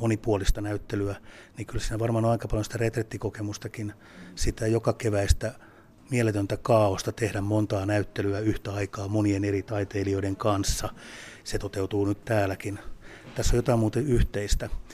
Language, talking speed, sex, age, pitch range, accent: Finnish, 135 wpm, male, 30-49, 100-110 Hz, native